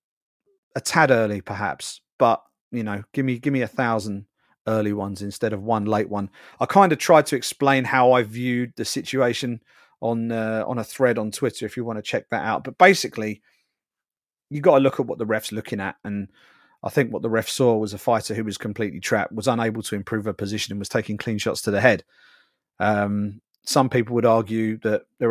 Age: 30-49